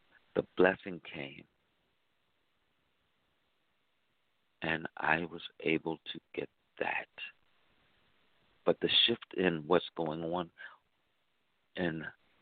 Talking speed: 85 wpm